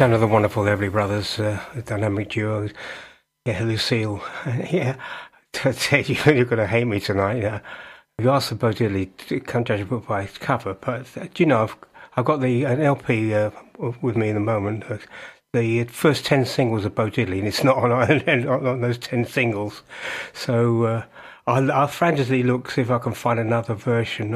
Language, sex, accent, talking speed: English, male, British, 195 wpm